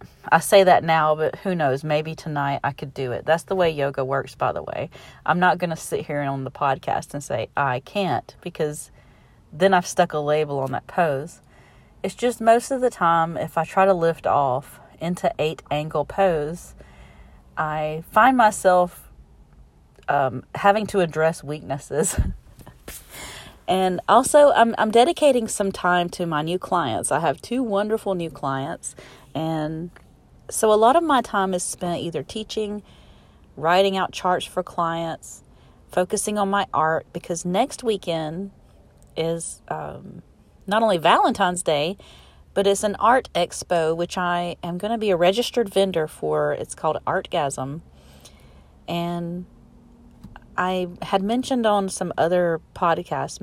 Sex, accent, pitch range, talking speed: female, American, 150-195 Hz, 155 wpm